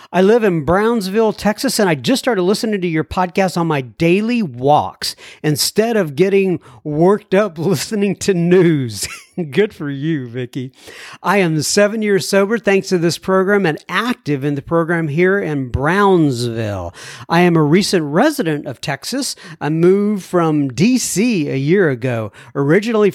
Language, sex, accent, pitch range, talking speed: English, male, American, 150-210 Hz, 160 wpm